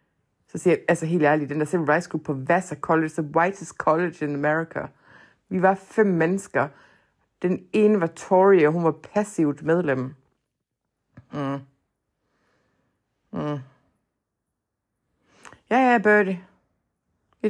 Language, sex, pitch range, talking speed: Danish, female, 155-200 Hz, 115 wpm